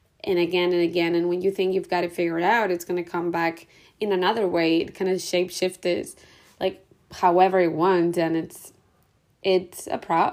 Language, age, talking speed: English, 20-39, 200 wpm